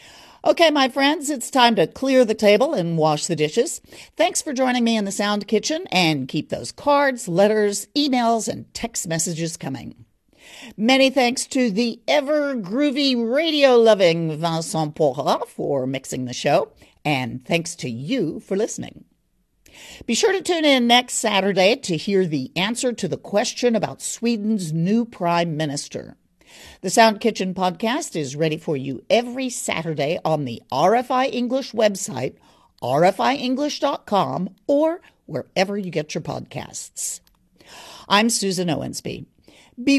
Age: 50-69